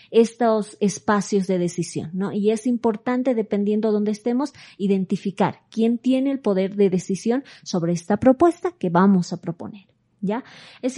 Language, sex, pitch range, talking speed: Spanish, female, 185-235 Hz, 155 wpm